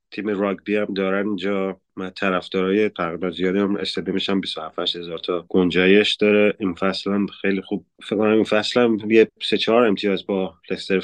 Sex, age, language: male, 20-39, Persian